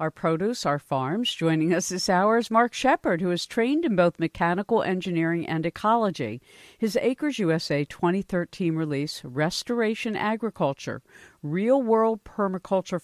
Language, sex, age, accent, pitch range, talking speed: English, female, 50-69, American, 165-225 Hz, 135 wpm